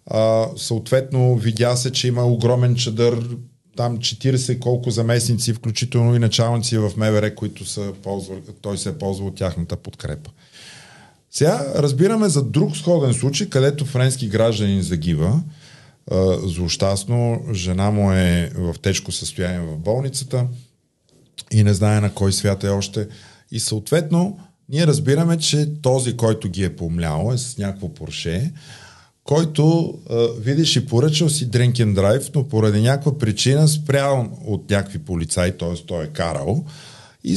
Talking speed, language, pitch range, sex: 140 wpm, Bulgarian, 100-135 Hz, male